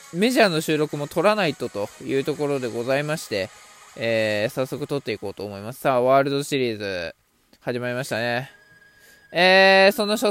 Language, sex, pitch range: Japanese, male, 135-220 Hz